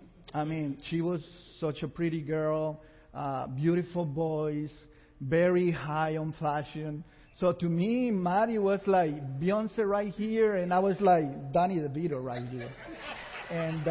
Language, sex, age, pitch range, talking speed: English, male, 40-59, 155-200 Hz, 140 wpm